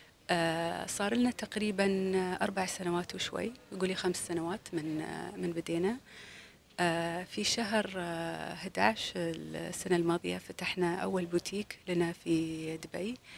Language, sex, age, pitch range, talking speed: Arabic, female, 30-49, 170-215 Hz, 120 wpm